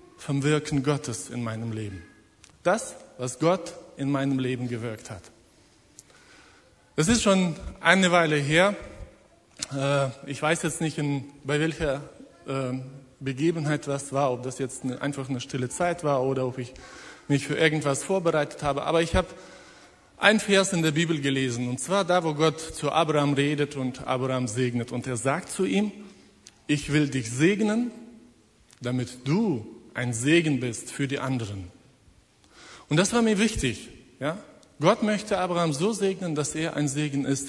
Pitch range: 130-160 Hz